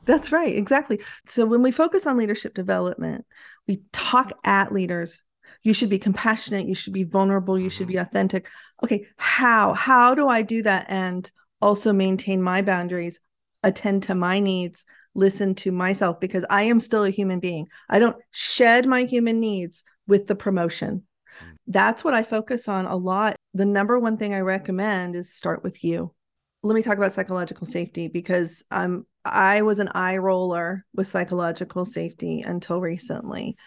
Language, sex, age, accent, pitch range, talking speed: English, female, 40-59, American, 180-205 Hz, 170 wpm